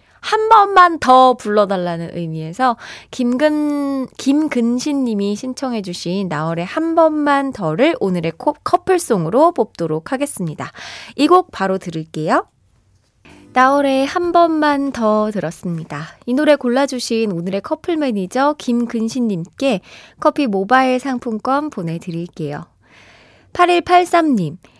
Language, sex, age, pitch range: Korean, female, 20-39, 185-285 Hz